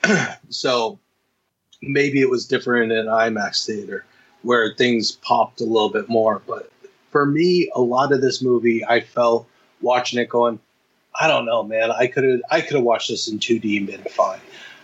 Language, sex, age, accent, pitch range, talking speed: English, male, 30-49, American, 115-135 Hz, 180 wpm